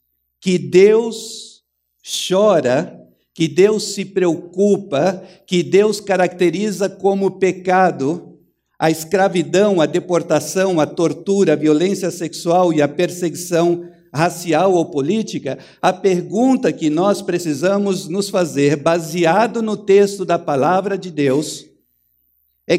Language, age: Portuguese, 60-79